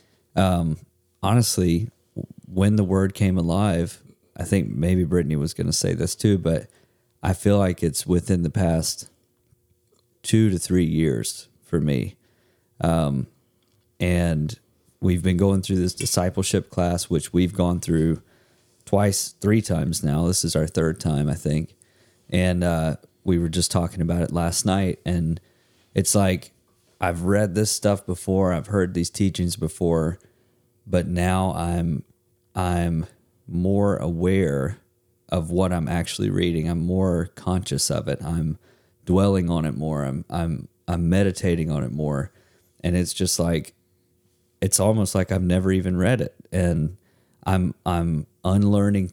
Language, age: English, 30-49